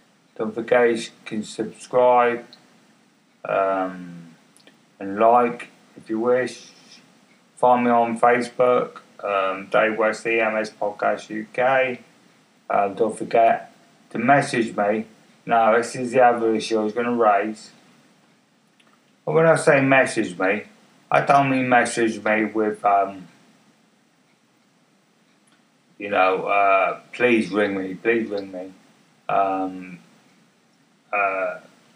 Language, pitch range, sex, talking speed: English, 105-130 Hz, male, 115 wpm